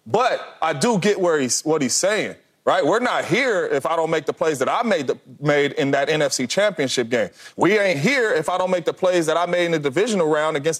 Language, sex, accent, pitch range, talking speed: English, male, American, 130-185 Hz, 255 wpm